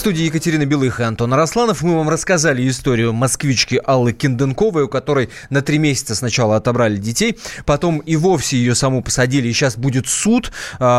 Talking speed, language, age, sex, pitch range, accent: 175 wpm, Russian, 20-39, male, 120-160 Hz, native